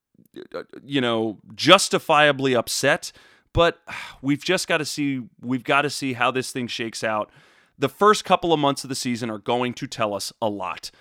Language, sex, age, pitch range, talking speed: English, male, 30-49, 115-150 Hz, 185 wpm